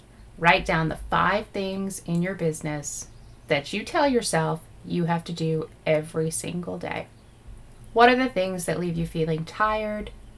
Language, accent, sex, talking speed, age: English, American, female, 160 wpm, 30-49